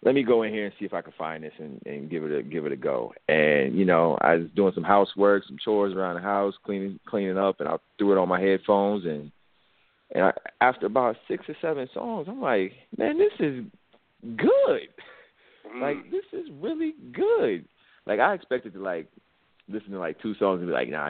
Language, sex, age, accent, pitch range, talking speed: English, male, 30-49, American, 90-110 Hz, 220 wpm